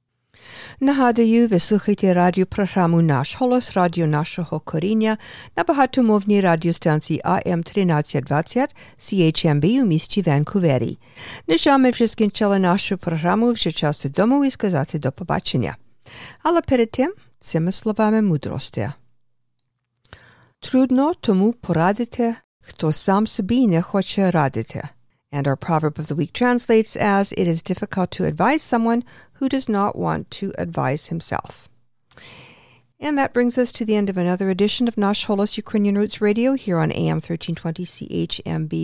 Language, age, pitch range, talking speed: English, 50-69, 155-235 Hz, 130 wpm